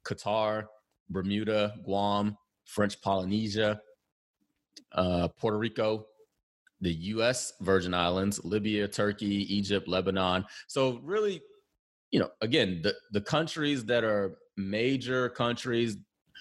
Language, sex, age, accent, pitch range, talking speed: English, male, 30-49, American, 95-115 Hz, 100 wpm